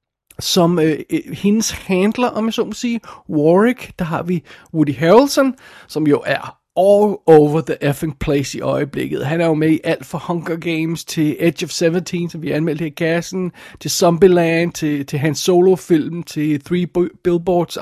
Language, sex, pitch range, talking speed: Danish, male, 155-195 Hz, 180 wpm